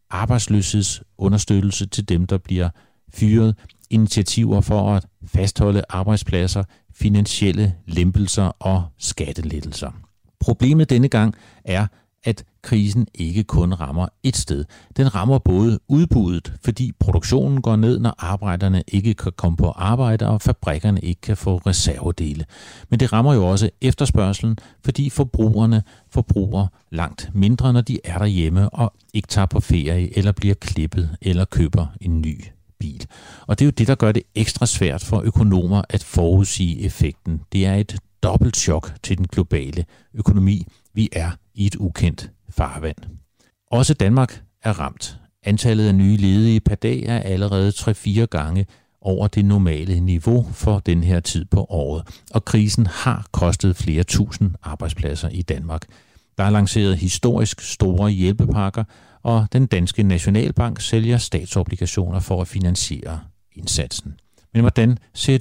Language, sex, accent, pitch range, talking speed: Danish, male, native, 90-110 Hz, 145 wpm